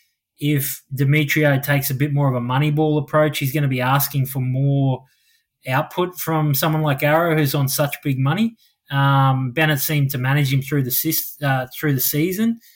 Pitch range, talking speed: 135-150 Hz, 195 wpm